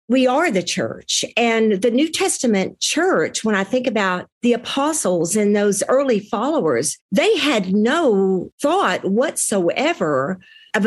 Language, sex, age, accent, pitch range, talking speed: English, female, 50-69, American, 195-265 Hz, 140 wpm